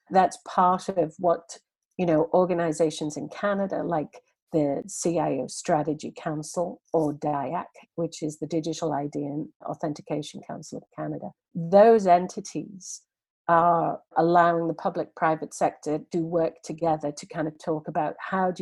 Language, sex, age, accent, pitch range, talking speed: English, female, 50-69, British, 155-180 Hz, 140 wpm